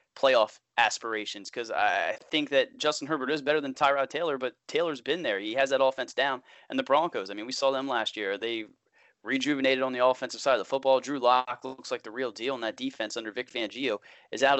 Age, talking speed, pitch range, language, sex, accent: 20-39, 230 wpm, 115-135 Hz, English, male, American